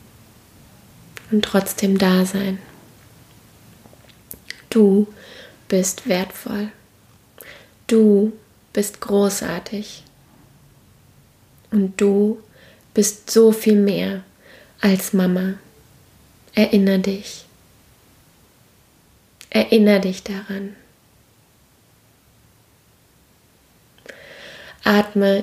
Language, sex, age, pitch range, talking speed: German, female, 20-39, 195-215 Hz, 55 wpm